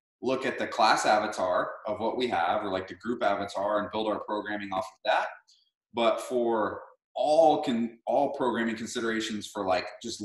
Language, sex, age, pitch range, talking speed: English, male, 30-49, 110-140 Hz, 180 wpm